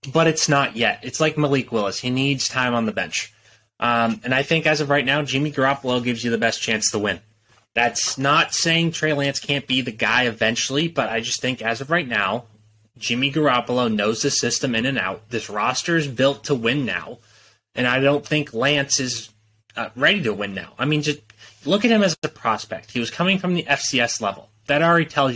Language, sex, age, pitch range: English, male, 20-39, 110-145 Hz